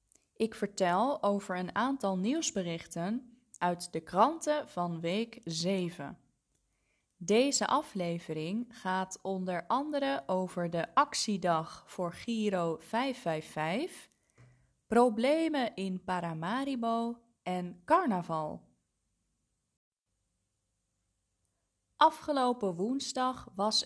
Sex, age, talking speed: female, 20-39, 80 wpm